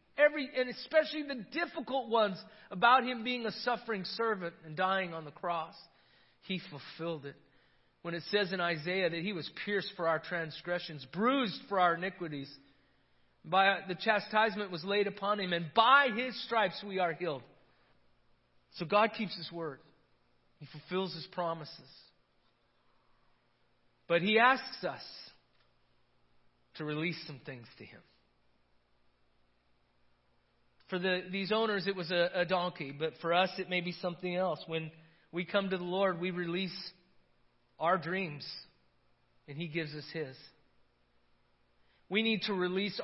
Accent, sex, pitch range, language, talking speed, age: American, male, 155-195 Hz, English, 145 wpm, 40-59